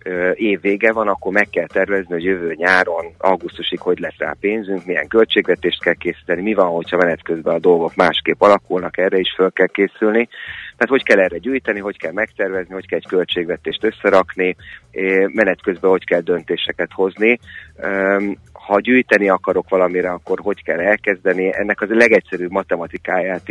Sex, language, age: male, Hungarian, 30-49